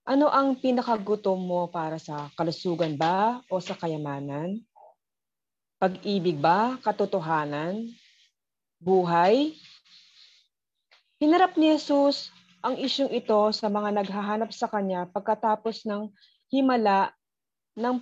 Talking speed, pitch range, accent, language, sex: 100 wpm, 180-235 Hz, native, Filipino, female